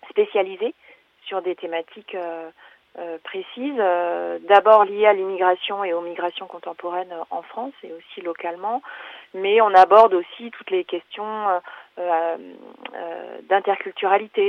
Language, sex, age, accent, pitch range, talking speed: French, female, 30-49, French, 170-215 Hz, 130 wpm